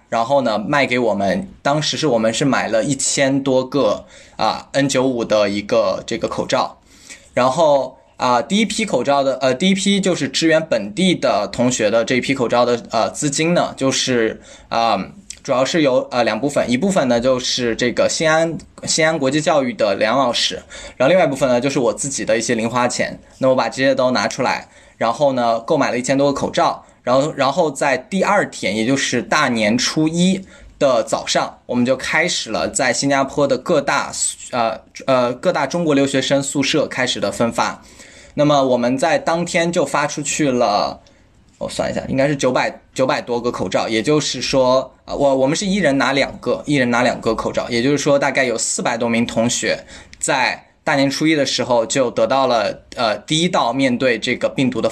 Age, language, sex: 20-39, Chinese, male